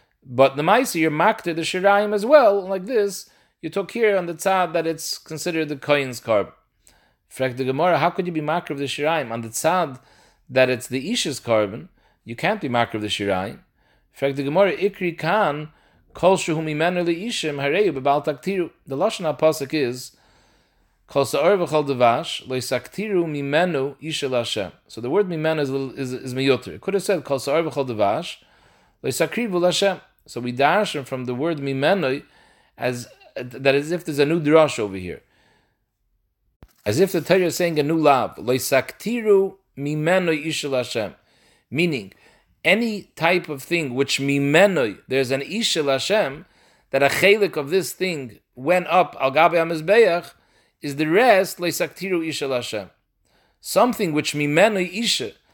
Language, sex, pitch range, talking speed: English, male, 135-180 Hz, 165 wpm